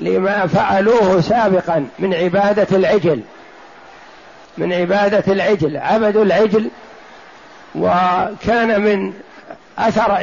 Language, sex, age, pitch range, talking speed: Arabic, male, 50-69, 195-230 Hz, 80 wpm